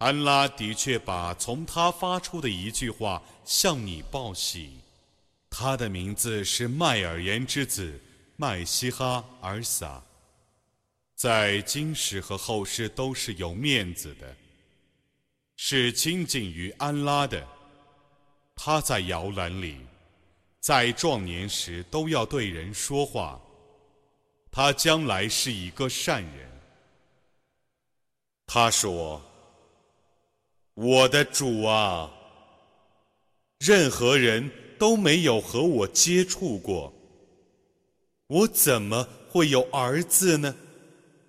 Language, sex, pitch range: Arabic, male, 100-145 Hz